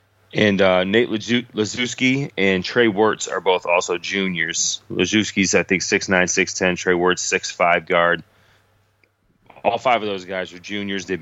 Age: 20-39